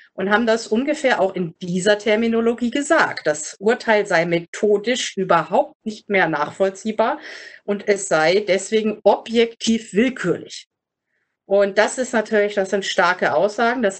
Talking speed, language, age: 135 wpm, German, 30-49